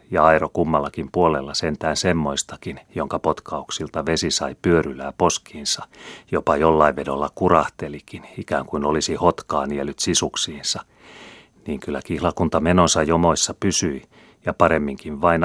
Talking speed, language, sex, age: 120 wpm, Finnish, male, 40-59